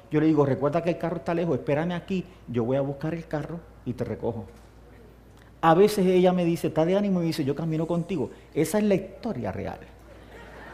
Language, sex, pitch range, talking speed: English, male, 135-190 Hz, 225 wpm